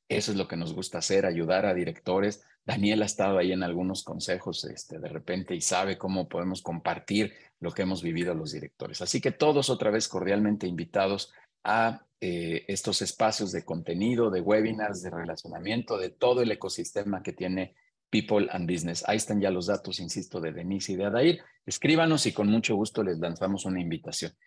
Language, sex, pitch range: Spanish, male, 90-110 Hz